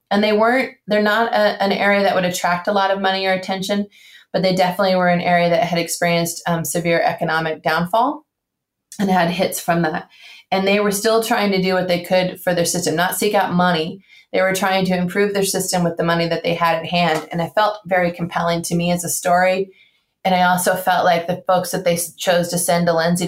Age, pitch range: 20-39, 170-195 Hz